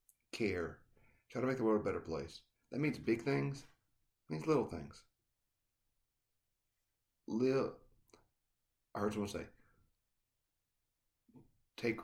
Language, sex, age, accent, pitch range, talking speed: English, male, 40-59, American, 85-115 Hz, 110 wpm